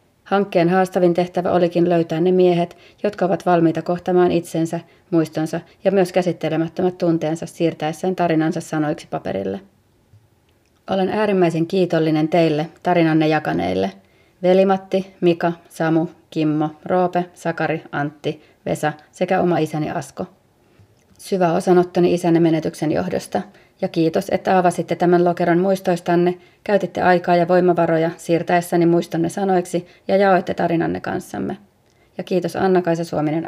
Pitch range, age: 160-180 Hz, 30-49